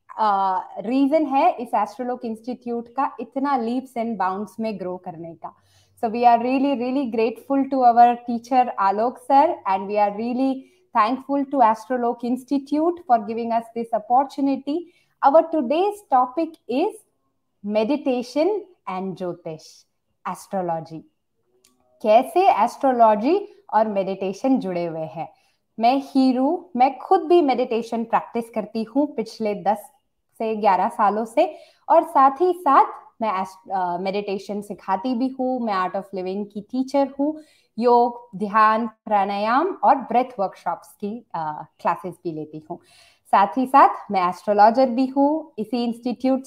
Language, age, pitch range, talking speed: Hindi, 20-39, 210-280 Hz, 75 wpm